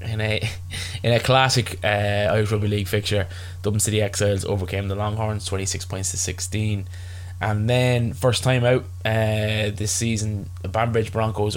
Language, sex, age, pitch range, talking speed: English, male, 20-39, 95-110 Hz, 160 wpm